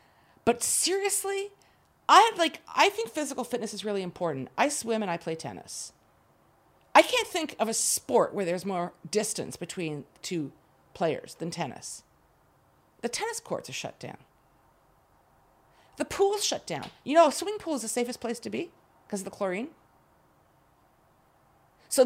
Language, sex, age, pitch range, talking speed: English, female, 50-69, 165-255 Hz, 160 wpm